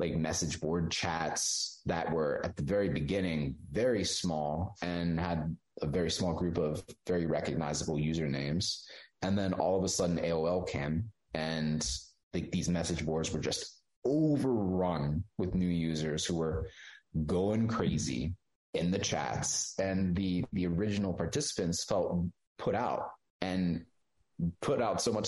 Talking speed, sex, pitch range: 145 wpm, male, 80-110 Hz